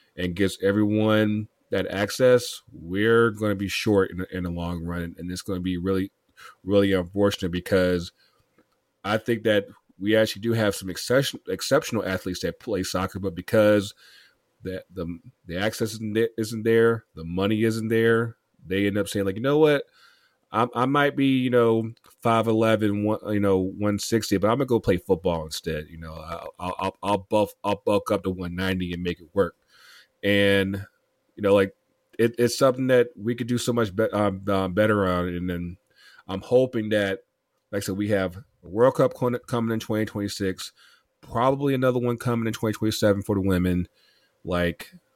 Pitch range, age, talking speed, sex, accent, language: 90-110 Hz, 30-49, 180 wpm, male, American, English